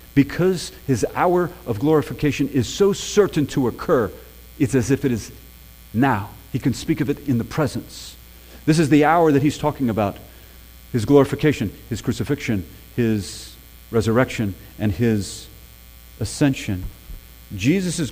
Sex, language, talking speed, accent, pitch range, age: male, English, 140 wpm, American, 95-135 Hz, 40-59